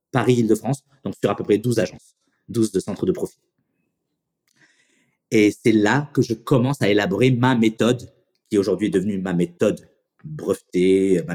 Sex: male